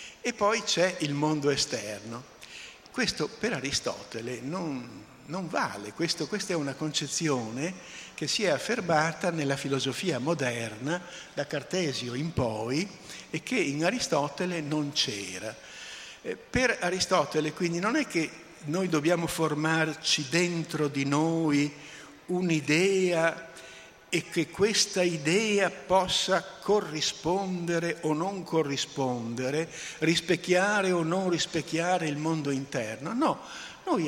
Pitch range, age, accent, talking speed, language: 145-190 Hz, 60-79, native, 115 wpm, Italian